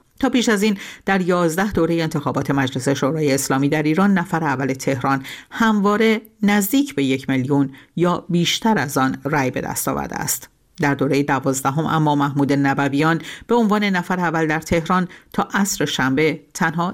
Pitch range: 135-195 Hz